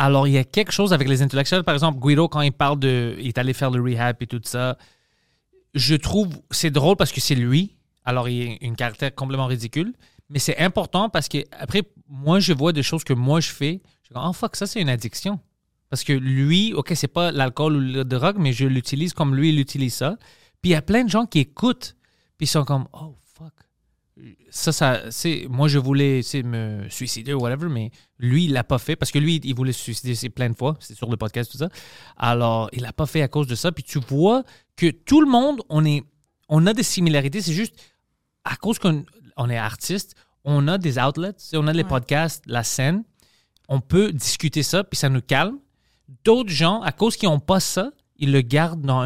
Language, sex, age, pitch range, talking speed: French, male, 30-49, 130-170 Hz, 230 wpm